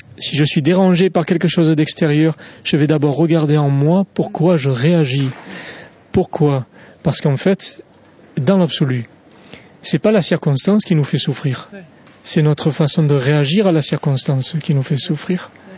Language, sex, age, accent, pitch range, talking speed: French, male, 40-59, French, 145-175 Hz, 165 wpm